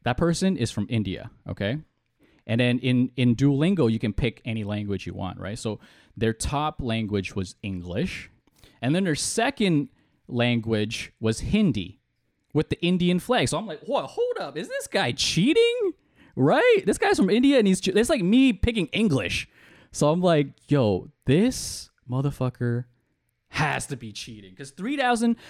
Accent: American